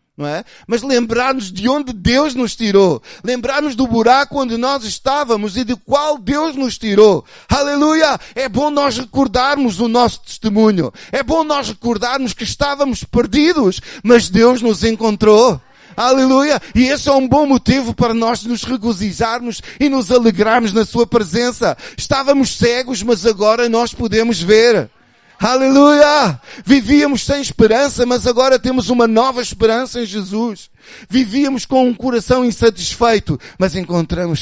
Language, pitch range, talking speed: Portuguese, 145-245 Hz, 150 wpm